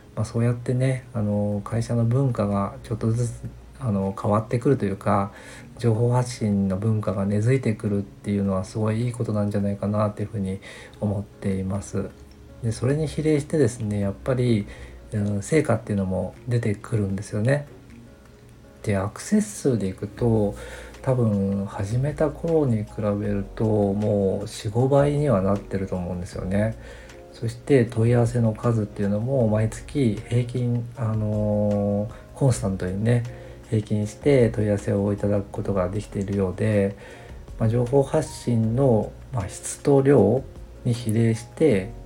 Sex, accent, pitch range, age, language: male, native, 100-120 Hz, 50-69, Japanese